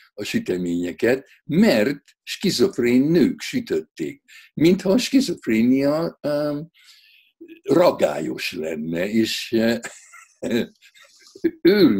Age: 60-79